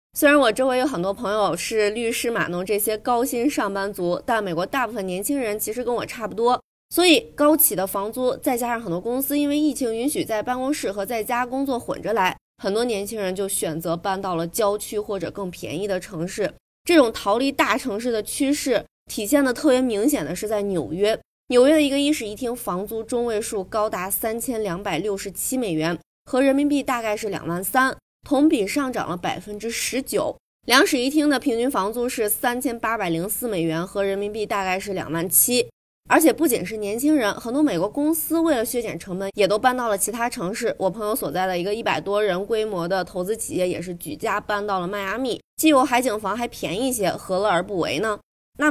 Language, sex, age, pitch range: Chinese, female, 20-39, 195-255 Hz